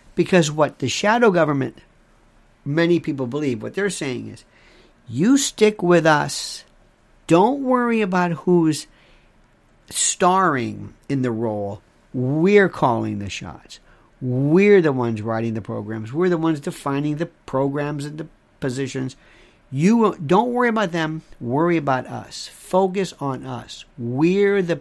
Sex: male